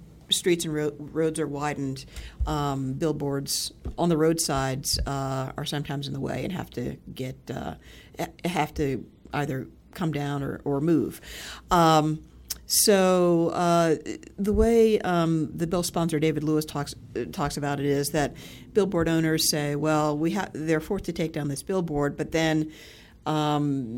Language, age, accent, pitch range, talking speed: English, 50-69, American, 140-165 Hz, 160 wpm